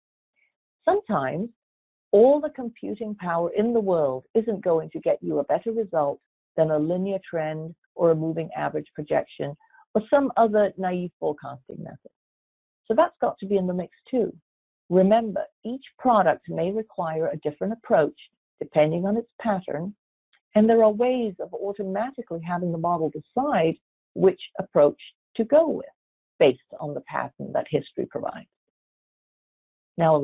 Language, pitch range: English, 155-225 Hz